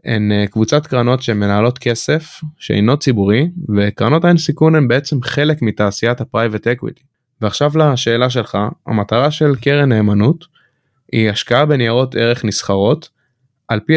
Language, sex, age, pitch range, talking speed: Hebrew, male, 20-39, 110-145 Hz, 130 wpm